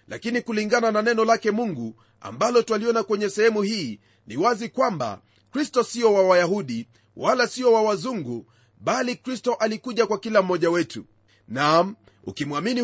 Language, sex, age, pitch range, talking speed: Swahili, male, 30-49, 185-235 Hz, 145 wpm